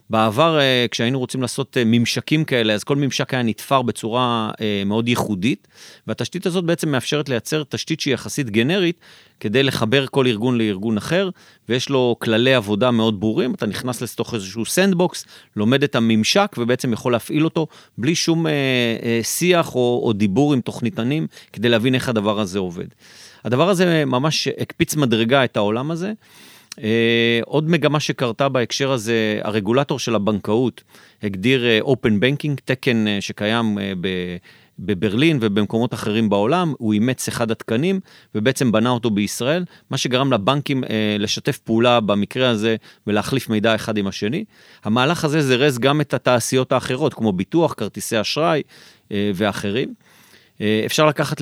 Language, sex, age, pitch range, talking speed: Hebrew, male, 40-59, 110-140 Hz, 150 wpm